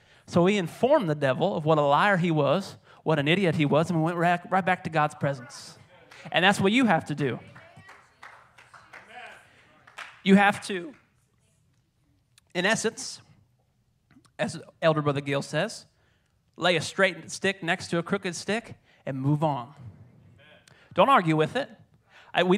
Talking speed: 155 wpm